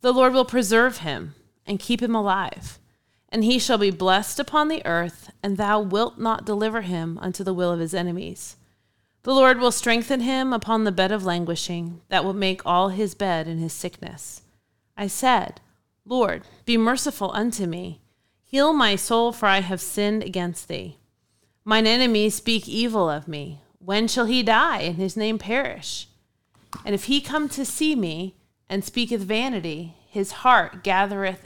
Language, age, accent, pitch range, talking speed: English, 30-49, American, 175-230 Hz, 175 wpm